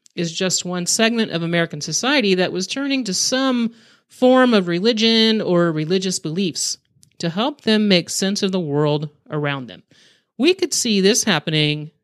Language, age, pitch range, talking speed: English, 40-59, 150-195 Hz, 165 wpm